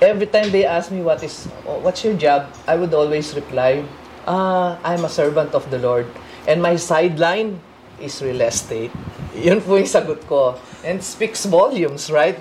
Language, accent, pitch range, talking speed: Filipino, native, 135-180 Hz, 175 wpm